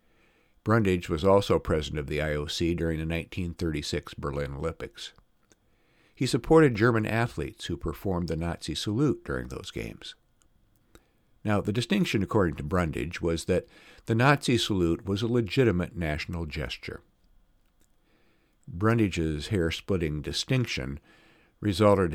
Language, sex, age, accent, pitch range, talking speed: English, male, 60-79, American, 80-110 Hz, 120 wpm